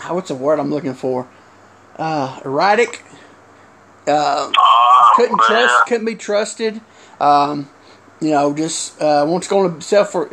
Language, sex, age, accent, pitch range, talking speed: English, male, 30-49, American, 155-210 Hz, 145 wpm